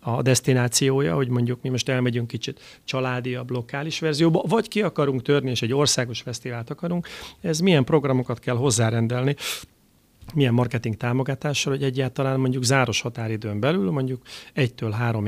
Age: 40-59